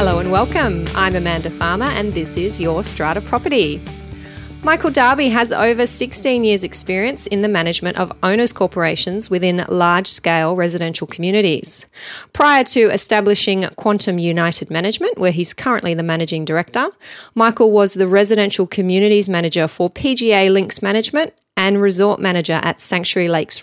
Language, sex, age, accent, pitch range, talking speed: English, female, 30-49, Australian, 170-210 Hz, 145 wpm